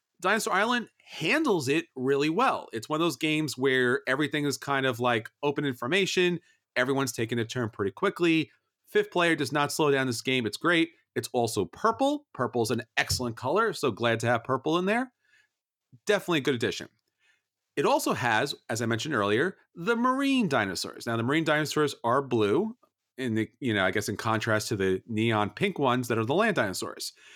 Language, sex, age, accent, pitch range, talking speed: English, male, 30-49, American, 120-175 Hz, 195 wpm